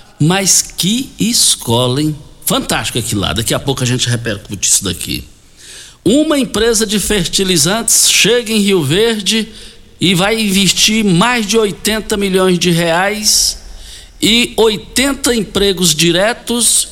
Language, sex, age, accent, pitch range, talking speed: Portuguese, male, 60-79, Brazilian, 115-185 Hz, 125 wpm